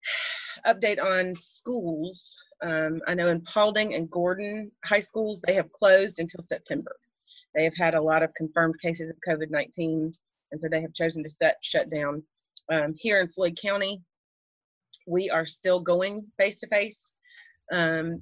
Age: 30-49